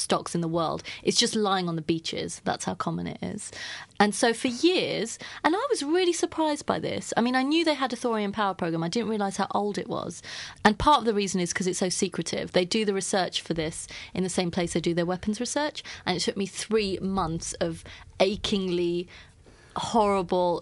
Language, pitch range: English, 175-205 Hz